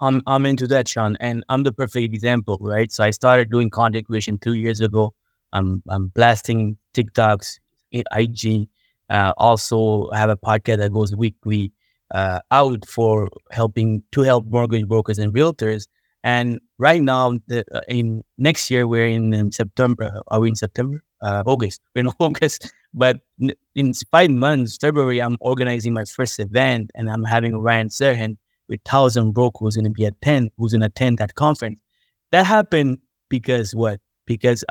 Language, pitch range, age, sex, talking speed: French, 110-125 Hz, 20-39, male, 165 wpm